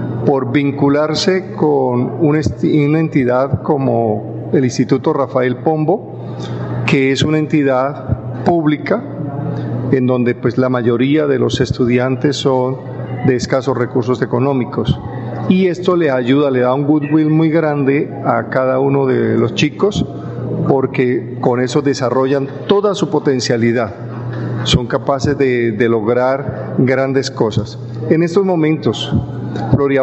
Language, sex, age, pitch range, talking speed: Spanish, male, 50-69, 125-145 Hz, 125 wpm